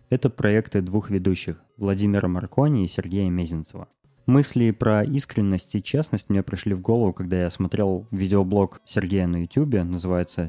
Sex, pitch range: male, 90-110 Hz